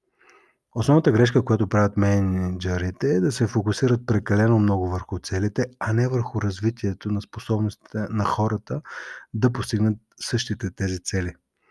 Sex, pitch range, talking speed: male, 100-115 Hz, 135 wpm